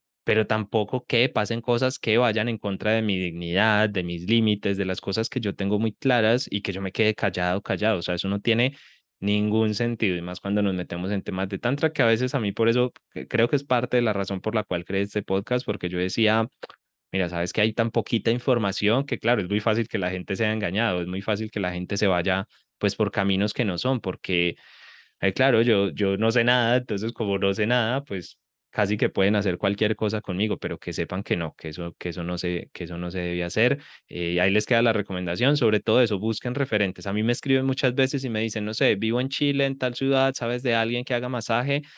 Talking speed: 245 wpm